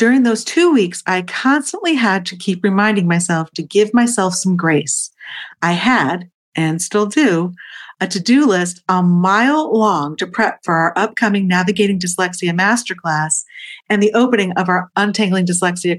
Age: 50-69